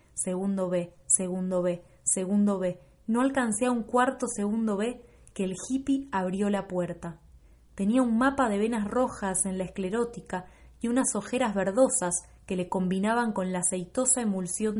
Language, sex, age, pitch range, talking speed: Spanish, female, 20-39, 185-225 Hz, 160 wpm